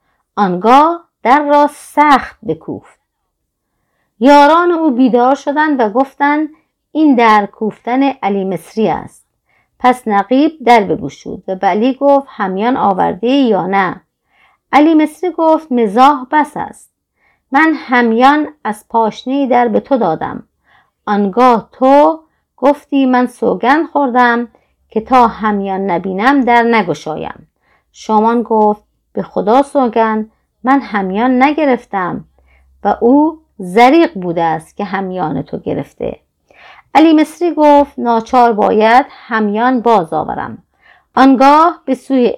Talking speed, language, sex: 115 wpm, Persian, female